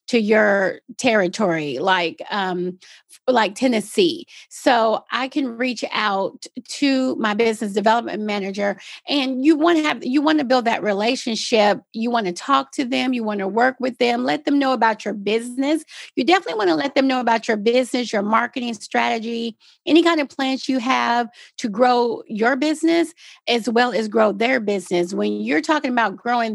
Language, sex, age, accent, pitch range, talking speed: English, female, 40-59, American, 215-255 Hz, 180 wpm